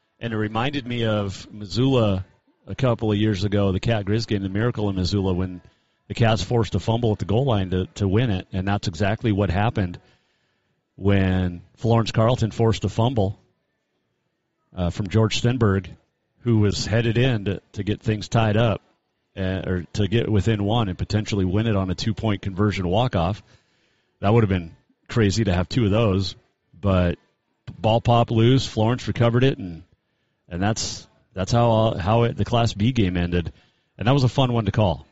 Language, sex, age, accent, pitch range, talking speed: English, male, 40-59, American, 95-120 Hz, 190 wpm